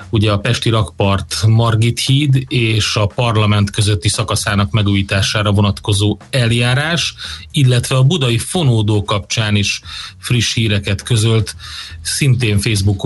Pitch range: 100-115 Hz